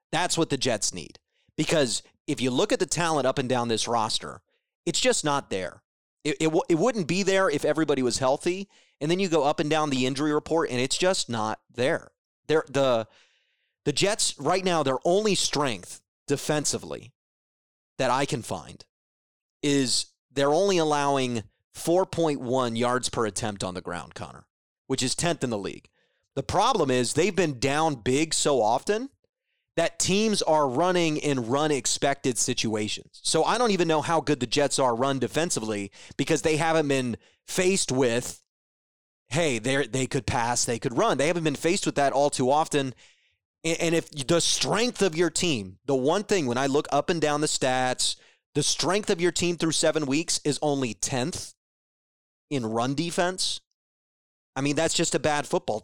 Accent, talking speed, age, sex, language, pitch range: American, 180 wpm, 30-49, male, English, 125-165 Hz